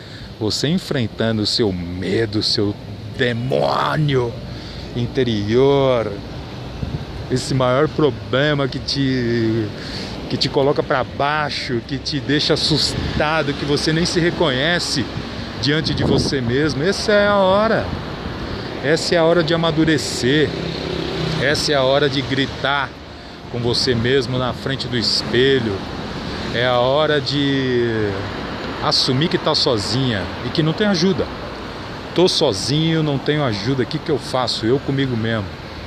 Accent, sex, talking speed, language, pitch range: Brazilian, male, 130 wpm, Portuguese, 120-155 Hz